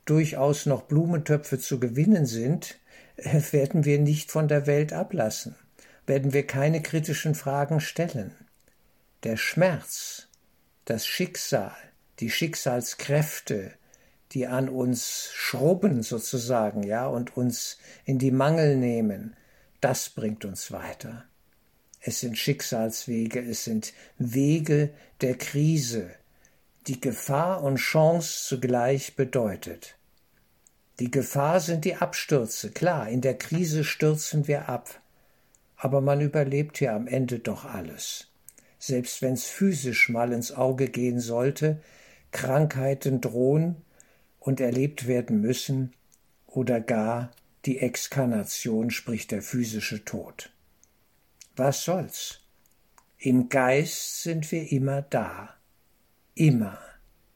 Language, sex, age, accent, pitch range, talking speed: German, male, 60-79, German, 120-150 Hz, 110 wpm